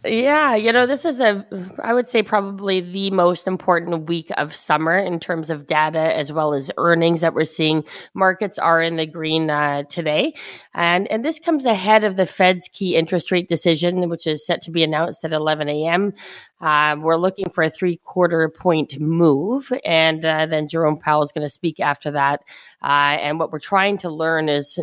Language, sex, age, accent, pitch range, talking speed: English, female, 30-49, American, 150-175 Hz, 195 wpm